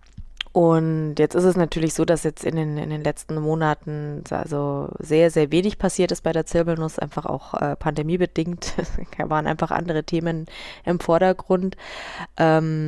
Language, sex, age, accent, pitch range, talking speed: German, female, 20-39, German, 150-170 Hz, 165 wpm